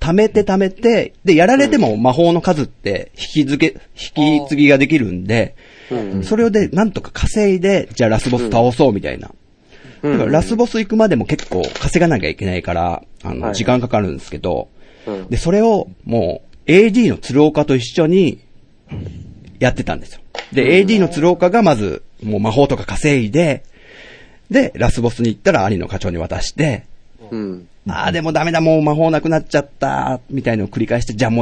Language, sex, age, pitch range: Japanese, male, 40-59, 105-170 Hz